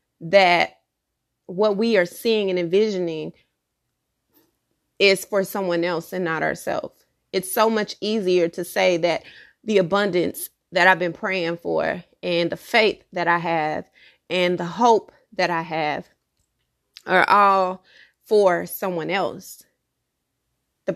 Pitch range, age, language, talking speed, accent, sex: 175-205 Hz, 30-49, English, 130 wpm, American, female